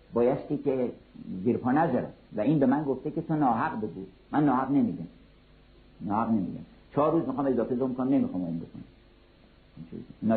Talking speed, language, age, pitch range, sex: 160 wpm, Persian, 50-69, 130-185 Hz, male